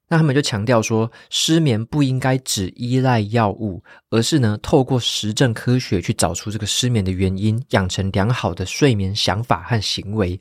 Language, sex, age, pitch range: Chinese, male, 20-39, 100-130 Hz